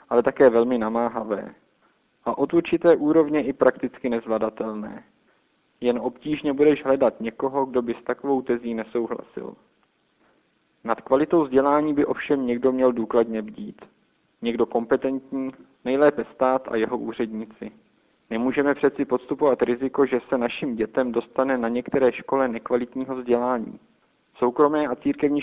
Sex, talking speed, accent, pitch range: male, 130 wpm, native, 120-140 Hz